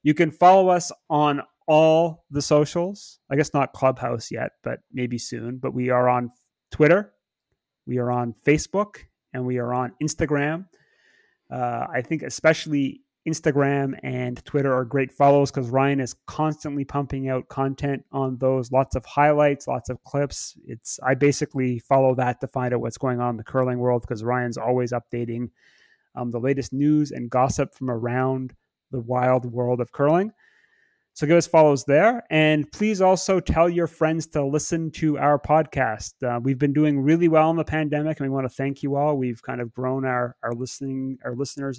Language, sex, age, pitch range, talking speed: English, male, 30-49, 125-155 Hz, 185 wpm